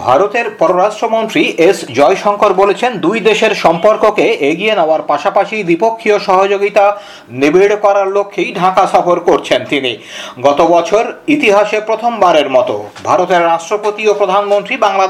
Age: 50-69